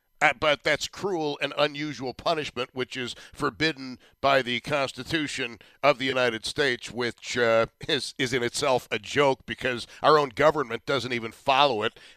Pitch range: 120-150 Hz